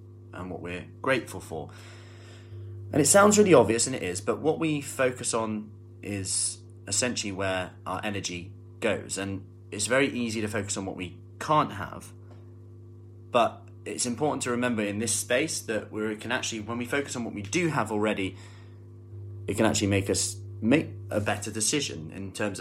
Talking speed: 180 wpm